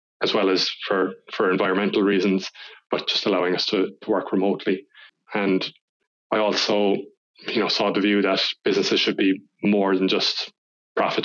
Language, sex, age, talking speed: English, male, 20-39, 165 wpm